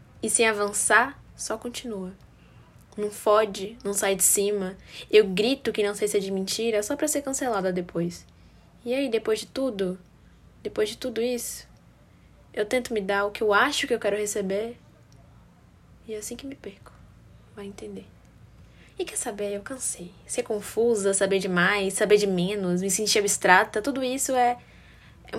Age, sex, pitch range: 10-29, female, 195-235 Hz